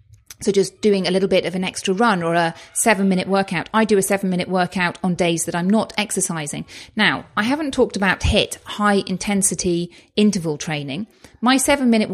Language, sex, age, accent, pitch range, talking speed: English, female, 40-59, British, 170-210 Hz, 180 wpm